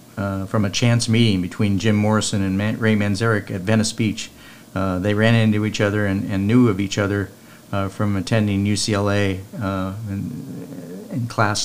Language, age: English, 50-69